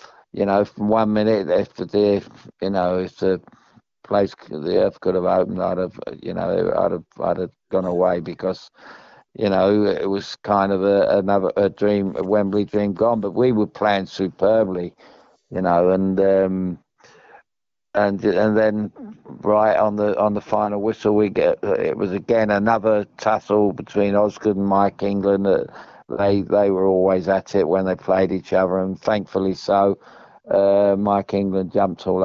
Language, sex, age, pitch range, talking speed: English, male, 50-69, 95-105 Hz, 175 wpm